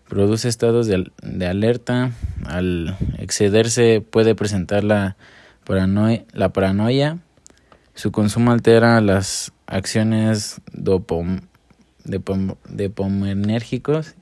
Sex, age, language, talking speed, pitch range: male, 20-39, Spanish, 75 wpm, 95-115 Hz